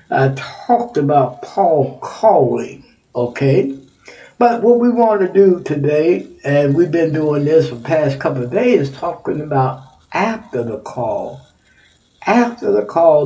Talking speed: 150 wpm